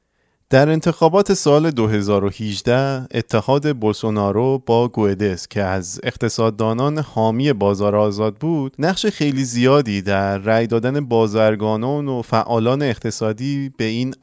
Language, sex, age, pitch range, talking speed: Persian, male, 30-49, 110-140 Hz, 115 wpm